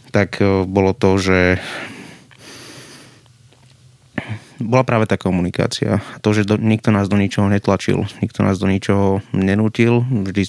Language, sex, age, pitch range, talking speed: Slovak, male, 20-39, 100-110 Hz, 125 wpm